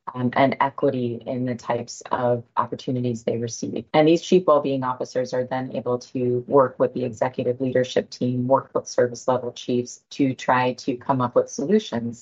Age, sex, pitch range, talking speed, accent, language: 30-49, female, 125-140 Hz, 170 wpm, American, English